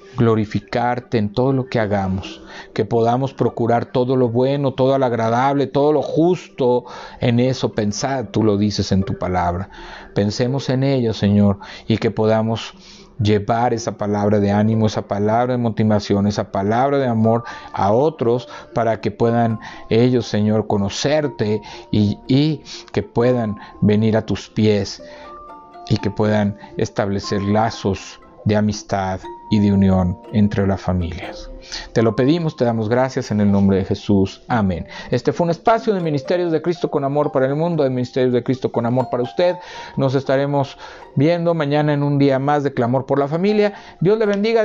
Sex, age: male, 50-69